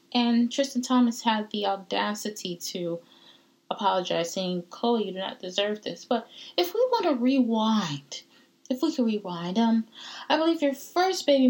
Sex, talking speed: female, 160 wpm